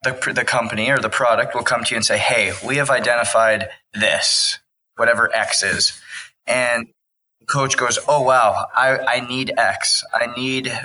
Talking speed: 170 wpm